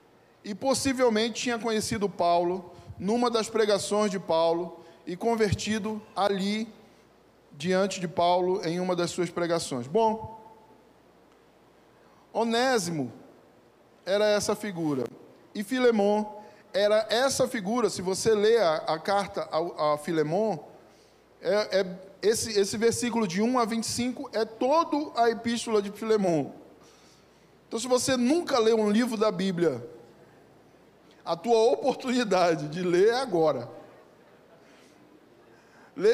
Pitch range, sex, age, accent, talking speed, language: 180-235 Hz, male, 10-29, Brazilian, 120 wpm, Portuguese